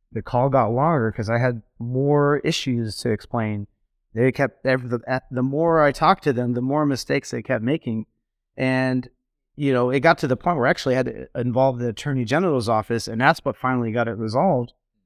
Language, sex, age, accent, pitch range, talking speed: English, male, 30-49, American, 115-140 Hz, 205 wpm